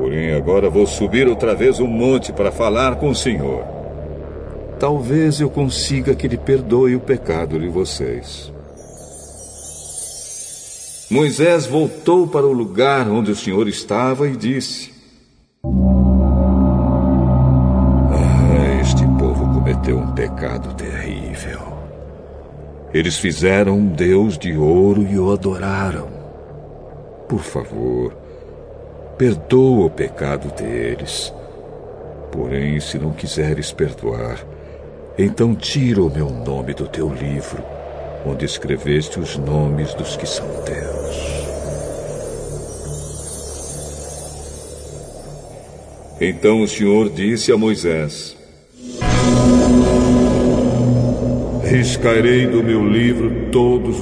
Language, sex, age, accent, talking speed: Portuguese, male, 60-79, Brazilian, 100 wpm